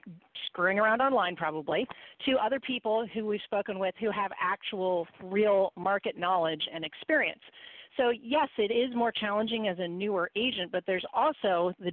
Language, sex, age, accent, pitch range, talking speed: English, female, 40-59, American, 185-235 Hz, 165 wpm